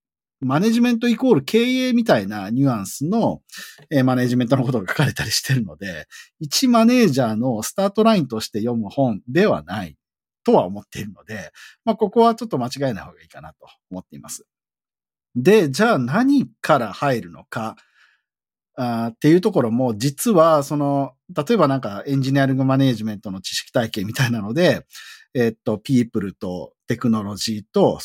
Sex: male